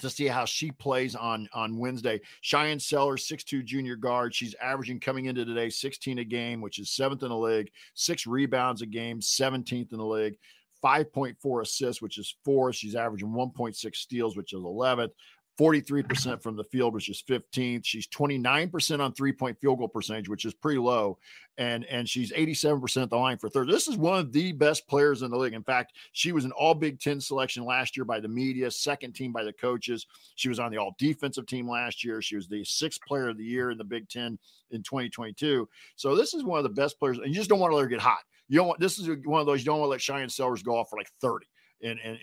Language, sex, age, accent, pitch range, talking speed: English, male, 50-69, American, 115-140 Hz, 225 wpm